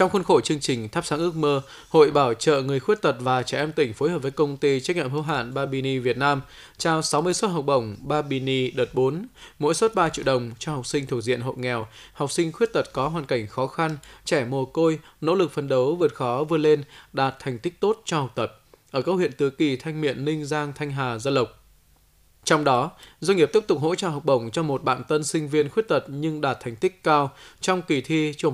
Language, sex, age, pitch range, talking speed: Vietnamese, male, 20-39, 130-160 Hz, 250 wpm